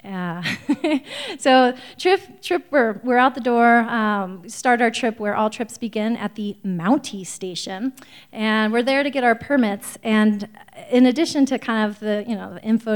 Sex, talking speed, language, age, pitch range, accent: female, 185 wpm, English, 30-49, 195-245 Hz, American